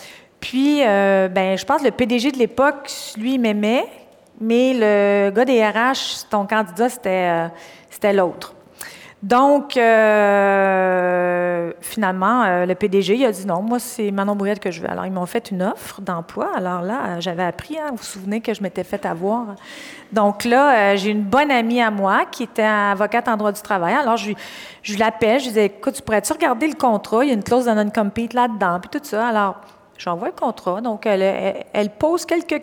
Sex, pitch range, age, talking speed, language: female, 185-235 Hz, 40-59, 205 wpm, French